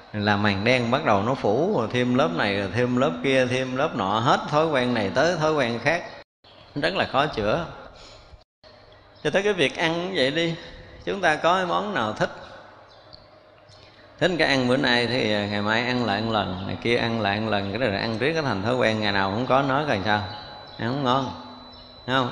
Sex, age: male, 20-39